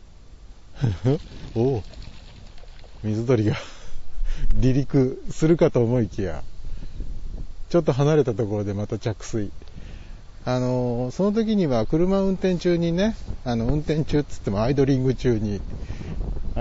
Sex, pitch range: male, 95-150 Hz